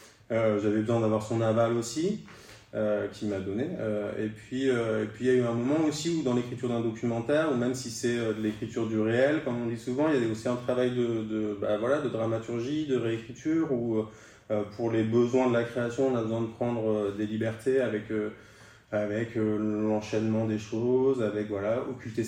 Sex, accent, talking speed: male, French, 210 wpm